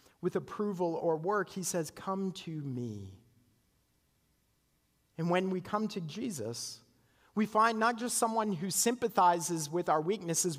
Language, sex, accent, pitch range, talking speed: English, male, American, 155-210 Hz, 140 wpm